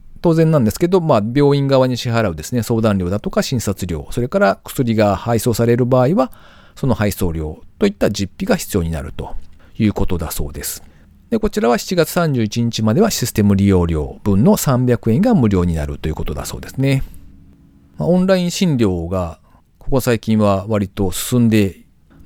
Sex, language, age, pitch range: male, Japanese, 40-59, 90-130 Hz